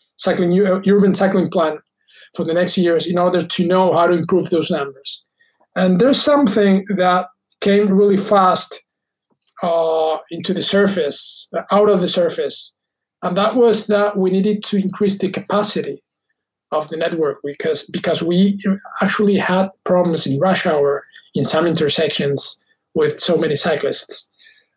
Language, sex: English, male